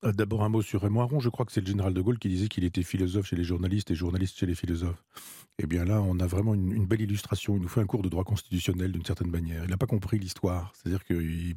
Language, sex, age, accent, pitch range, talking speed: French, male, 40-59, French, 90-105 Hz, 285 wpm